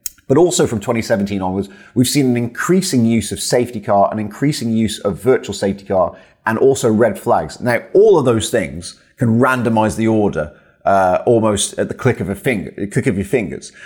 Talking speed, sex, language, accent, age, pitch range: 195 wpm, male, English, British, 30-49, 100-130 Hz